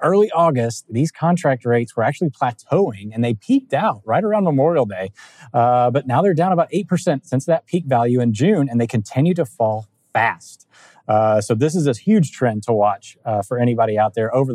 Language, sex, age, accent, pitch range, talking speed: English, male, 30-49, American, 120-165 Hz, 205 wpm